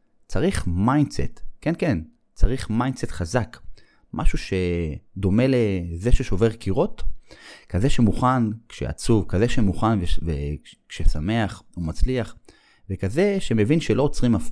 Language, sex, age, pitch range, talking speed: Hebrew, male, 30-49, 85-125 Hz, 105 wpm